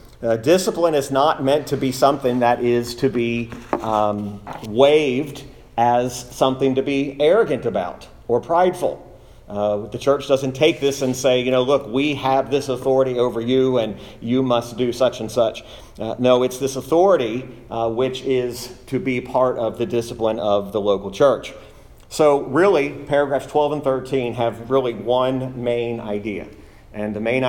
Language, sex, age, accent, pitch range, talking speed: English, male, 40-59, American, 110-135 Hz, 170 wpm